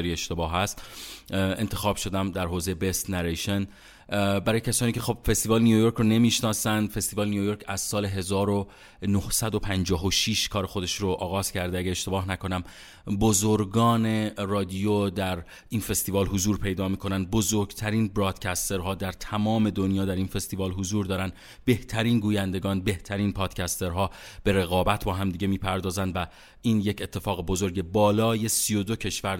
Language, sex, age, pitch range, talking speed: Persian, male, 30-49, 95-110 Hz, 145 wpm